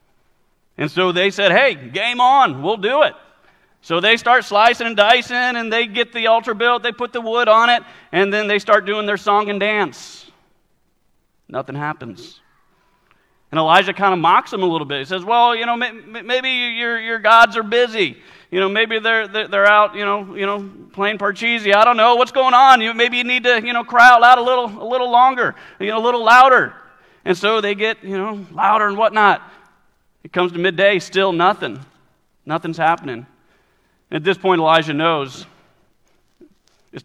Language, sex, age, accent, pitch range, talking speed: English, male, 40-59, American, 135-230 Hz, 190 wpm